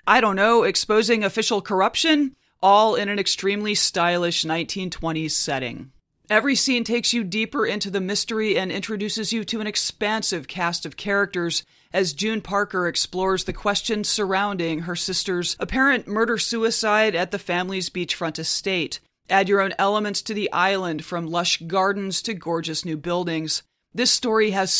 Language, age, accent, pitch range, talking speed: English, 30-49, American, 175-210 Hz, 150 wpm